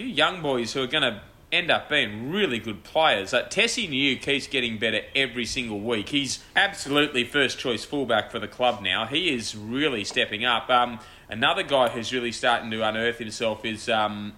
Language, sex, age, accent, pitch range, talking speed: English, male, 30-49, Australian, 110-140 Hz, 190 wpm